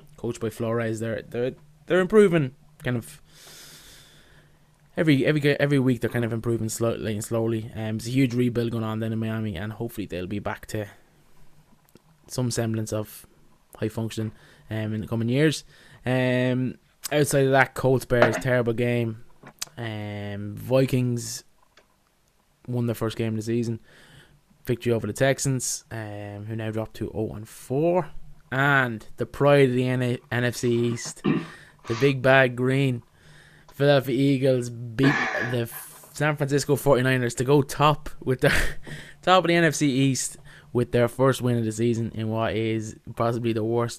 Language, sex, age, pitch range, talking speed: English, male, 20-39, 115-140 Hz, 155 wpm